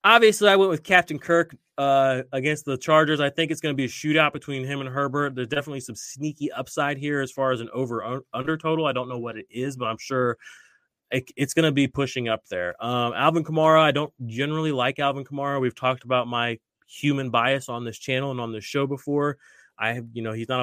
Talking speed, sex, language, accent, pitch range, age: 235 wpm, male, English, American, 125-155 Hz, 30-49